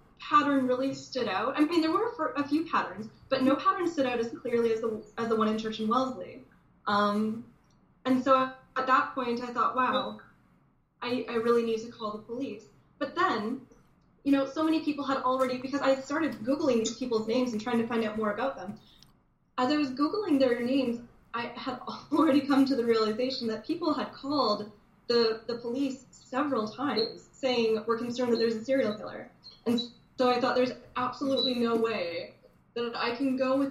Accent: American